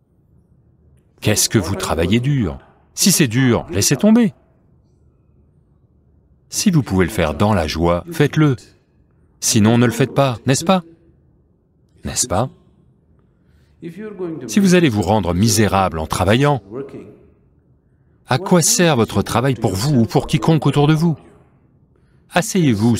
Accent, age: French, 40-59